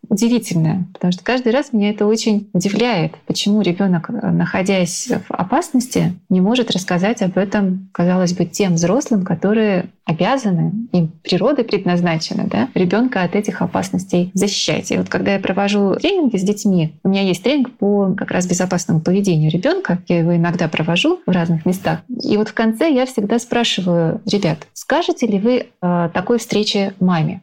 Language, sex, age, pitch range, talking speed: Russian, female, 20-39, 180-230 Hz, 160 wpm